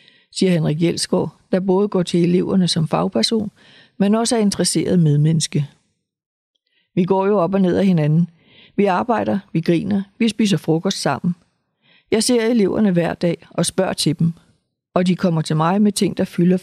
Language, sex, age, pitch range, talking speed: Danish, female, 60-79, 165-200 Hz, 175 wpm